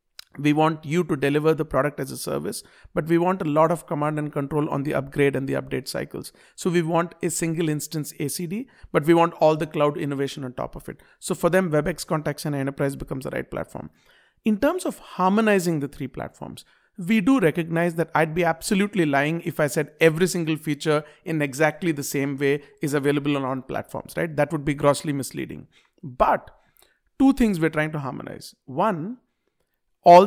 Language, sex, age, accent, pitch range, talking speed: English, male, 50-69, Indian, 150-180 Hz, 200 wpm